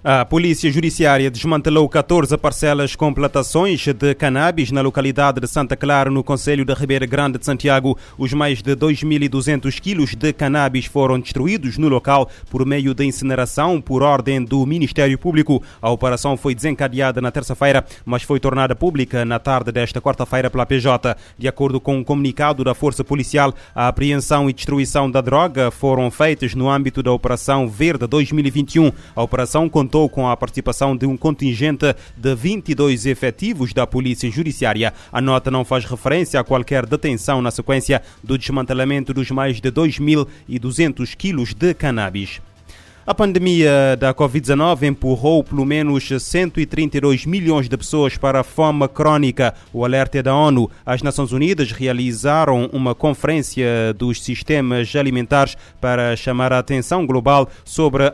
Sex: male